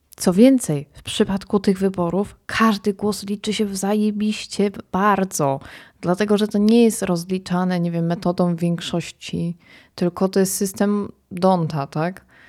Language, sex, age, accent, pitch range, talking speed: Polish, female, 20-39, native, 150-190 Hz, 140 wpm